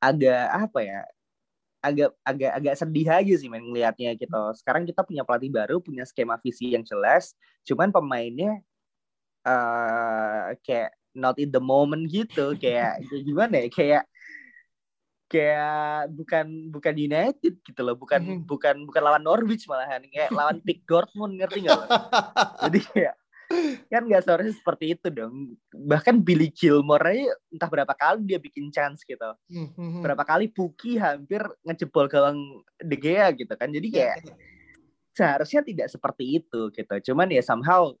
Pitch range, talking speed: 125-180 Hz, 150 wpm